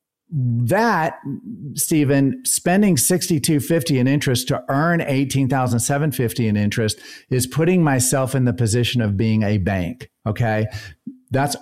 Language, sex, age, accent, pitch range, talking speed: English, male, 40-59, American, 110-140 Hz, 120 wpm